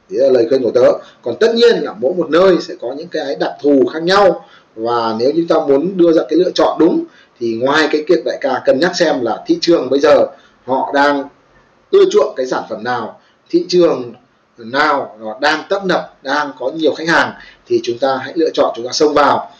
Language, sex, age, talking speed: Vietnamese, male, 20-39, 230 wpm